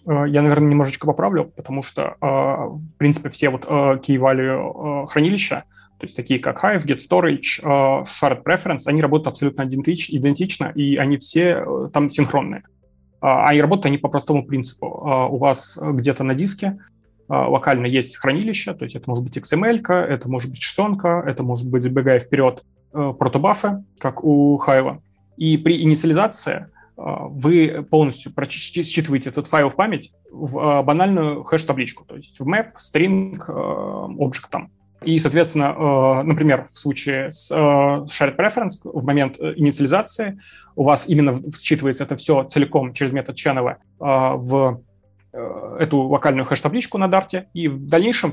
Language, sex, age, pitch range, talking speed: Russian, male, 20-39, 135-165 Hz, 140 wpm